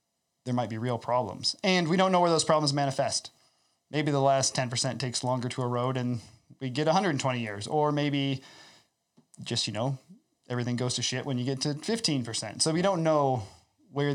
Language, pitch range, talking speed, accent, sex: English, 115-145 Hz, 190 wpm, American, male